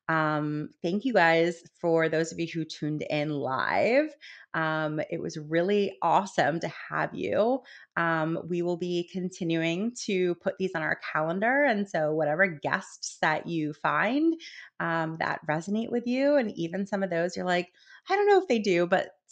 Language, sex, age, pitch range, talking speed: English, female, 30-49, 165-205 Hz, 175 wpm